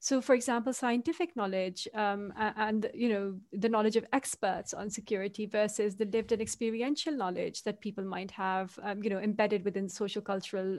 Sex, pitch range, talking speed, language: female, 210-240 Hz, 170 wpm, English